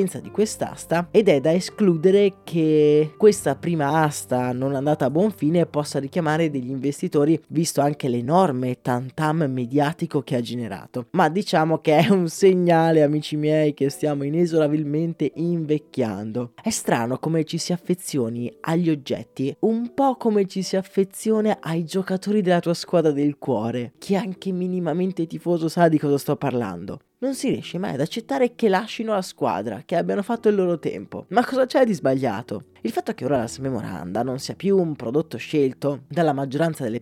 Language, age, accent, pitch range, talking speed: Italian, 20-39, native, 145-195 Hz, 170 wpm